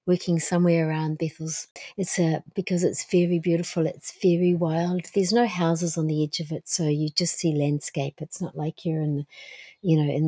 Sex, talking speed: female, 195 wpm